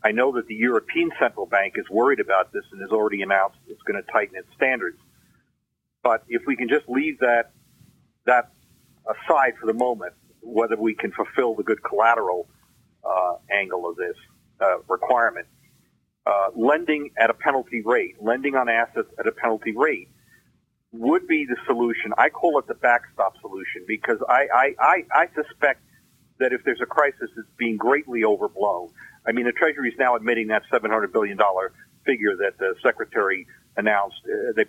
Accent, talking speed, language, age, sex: American, 175 wpm, English, 40-59, male